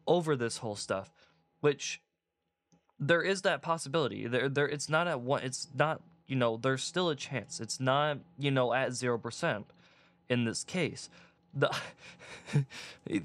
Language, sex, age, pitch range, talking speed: English, male, 20-39, 130-170 Hz, 155 wpm